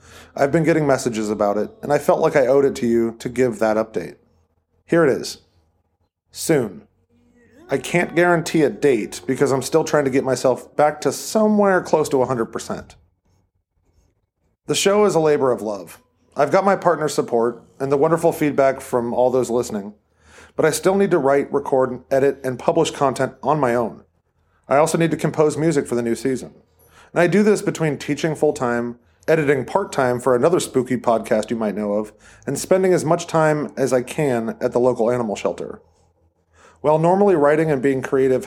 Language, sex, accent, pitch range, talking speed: English, male, American, 110-155 Hz, 190 wpm